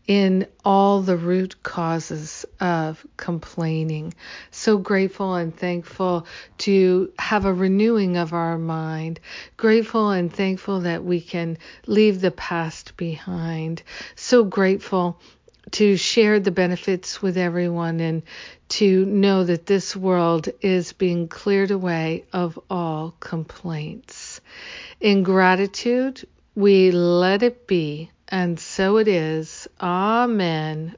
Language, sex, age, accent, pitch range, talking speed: English, female, 60-79, American, 170-200 Hz, 115 wpm